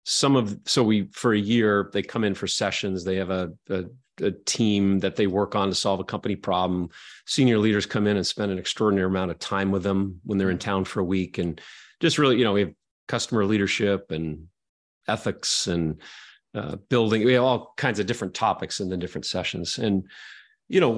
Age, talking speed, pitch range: 30-49, 210 wpm, 95-115 Hz